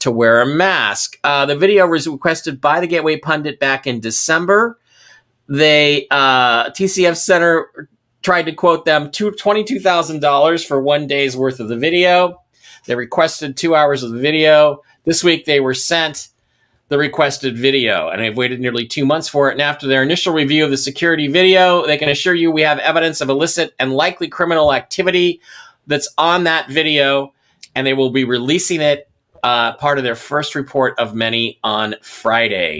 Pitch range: 130-165 Hz